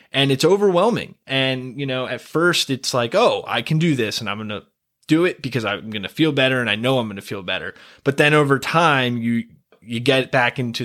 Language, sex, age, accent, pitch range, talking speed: English, male, 20-39, American, 105-135 Hz, 245 wpm